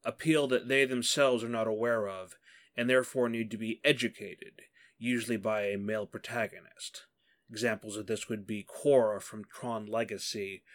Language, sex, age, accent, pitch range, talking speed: English, male, 30-49, American, 110-150 Hz, 155 wpm